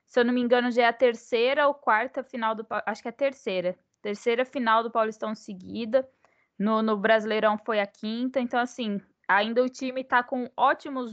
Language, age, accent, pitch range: Portuguese, 10-29, Brazilian, 230-275 Hz